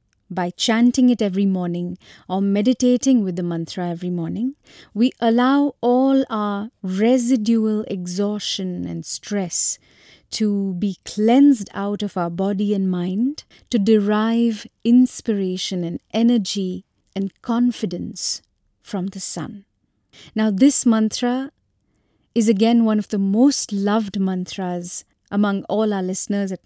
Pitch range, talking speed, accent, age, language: 185-235 Hz, 125 wpm, Indian, 30-49, English